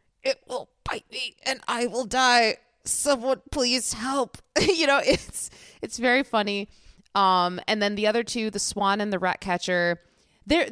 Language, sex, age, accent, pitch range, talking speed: English, female, 20-39, American, 180-250 Hz, 170 wpm